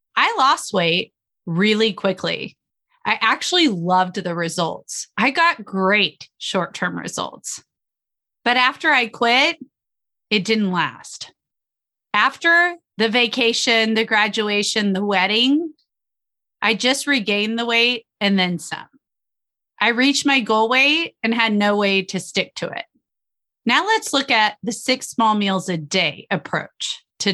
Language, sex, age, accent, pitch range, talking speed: English, female, 30-49, American, 205-275 Hz, 140 wpm